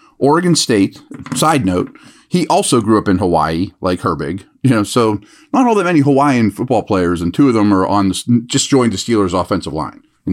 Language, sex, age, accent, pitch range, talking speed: English, male, 40-59, American, 100-140 Hz, 205 wpm